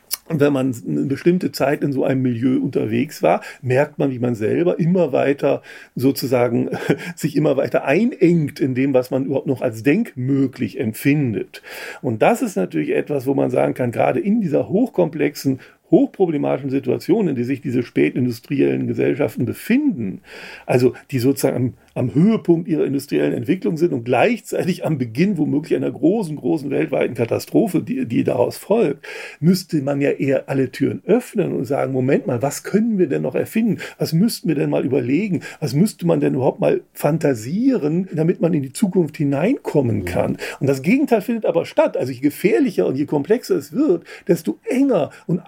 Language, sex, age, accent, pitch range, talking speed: German, male, 40-59, German, 135-195 Hz, 175 wpm